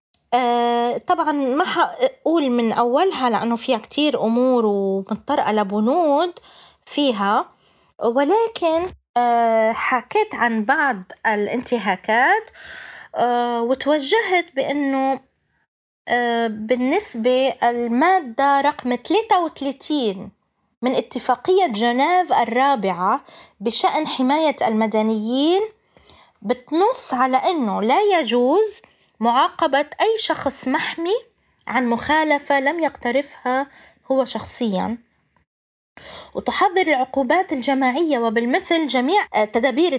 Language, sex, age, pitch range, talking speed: Arabic, female, 20-39, 235-330 Hz, 75 wpm